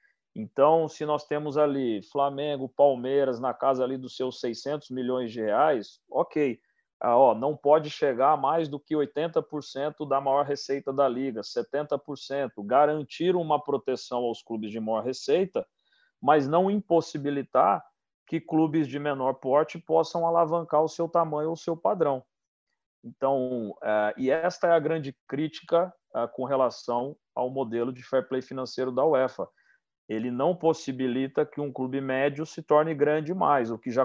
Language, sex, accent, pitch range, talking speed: Portuguese, male, Brazilian, 125-150 Hz, 155 wpm